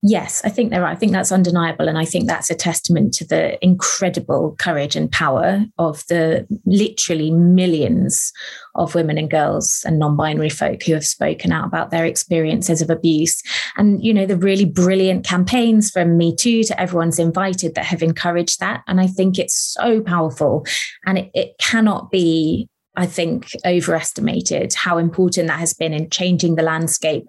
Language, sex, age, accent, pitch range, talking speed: English, female, 20-39, British, 165-195 Hz, 180 wpm